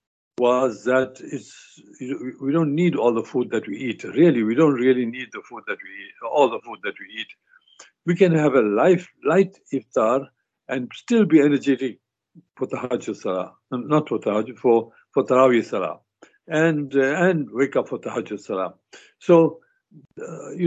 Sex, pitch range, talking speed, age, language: male, 115-160 Hz, 180 wpm, 60-79, English